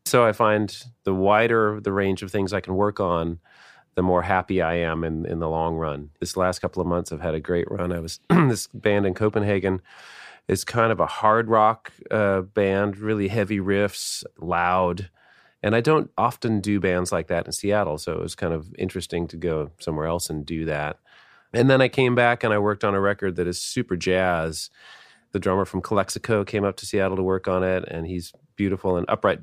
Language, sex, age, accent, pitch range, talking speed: English, male, 30-49, American, 85-105 Hz, 215 wpm